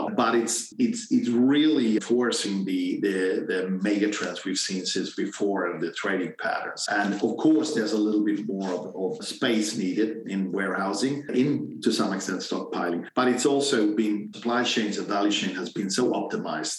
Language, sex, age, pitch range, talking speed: English, male, 40-59, 100-120 Hz, 180 wpm